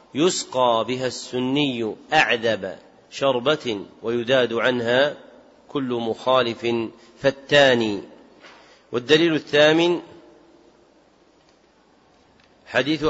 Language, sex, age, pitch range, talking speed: Arabic, male, 40-59, 120-140 Hz, 60 wpm